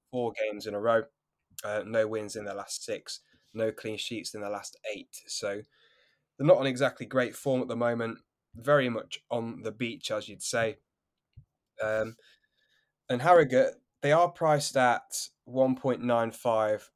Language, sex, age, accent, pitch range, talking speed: English, male, 10-29, British, 110-130 Hz, 170 wpm